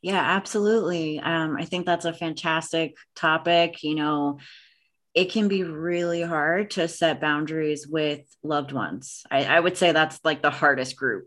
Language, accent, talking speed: English, American, 165 wpm